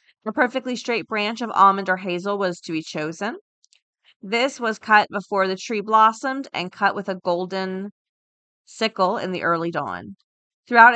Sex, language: female, English